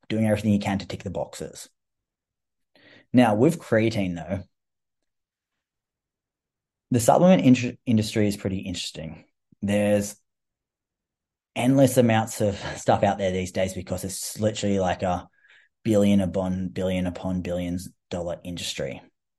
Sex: male